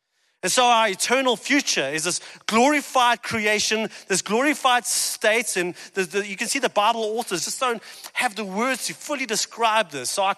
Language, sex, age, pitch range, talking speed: English, male, 40-59, 155-215 Hz, 185 wpm